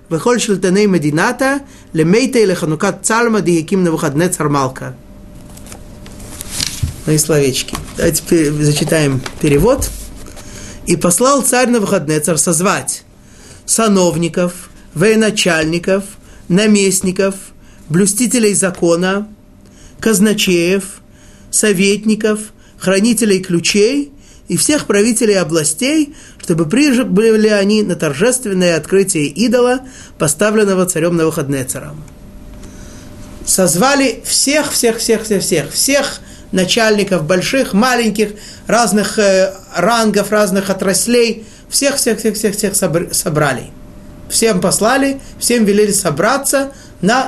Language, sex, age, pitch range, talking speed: Russian, male, 30-49, 165-220 Hz, 100 wpm